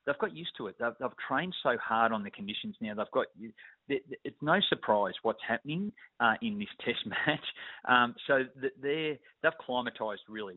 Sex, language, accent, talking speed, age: male, English, Australian, 180 wpm, 30-49